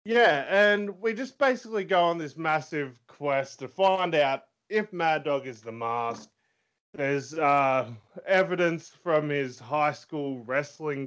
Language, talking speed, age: English, 145 wpm, 20-39